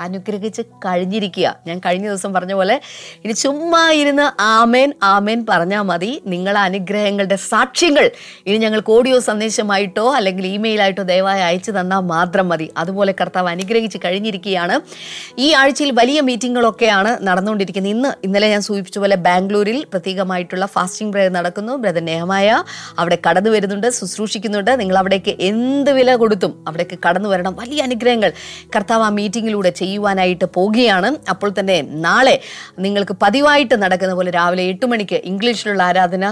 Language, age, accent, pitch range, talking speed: Malayalam, 30-49, native, 190-245 Hz, 130 wpm